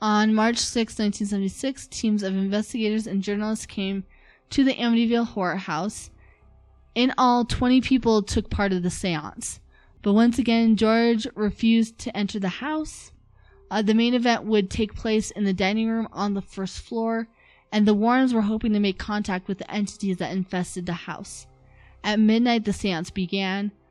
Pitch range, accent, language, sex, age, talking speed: 185-220 Hz, American, English, female, 20-39, 170 wpm